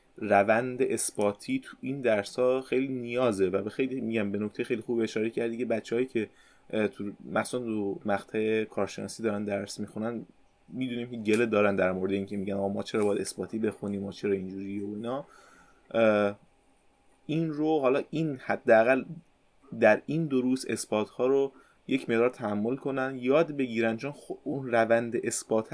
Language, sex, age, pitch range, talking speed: Persian, male, 20-39, 100-125 Hz, 155 wpm